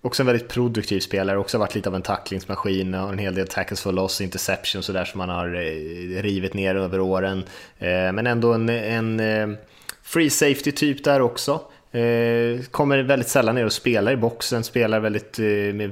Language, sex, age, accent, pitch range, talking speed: Swedish, male, 20-39, Norwegian, 95-120 Hz, 185 wpm